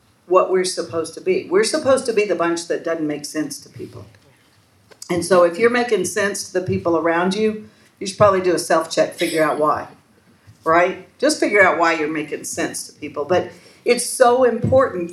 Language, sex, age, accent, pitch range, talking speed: English, female, 50-69, American, 155-200 Hz, 200 wpm